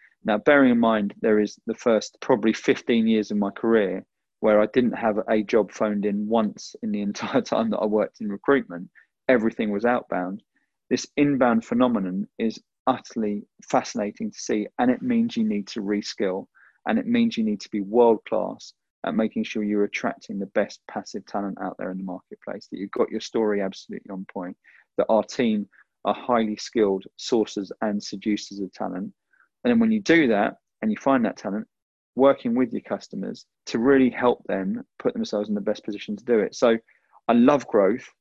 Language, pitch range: English, 105-140 Hz